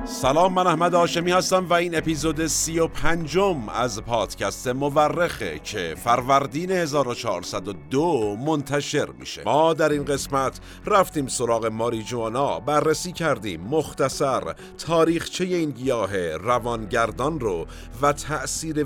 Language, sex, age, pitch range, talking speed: Persian, male, 50-69, 115-155 Hz, 120 wpm